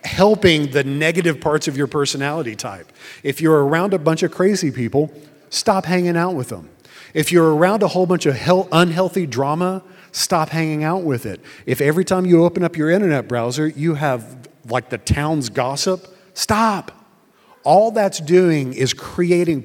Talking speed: 175 wpm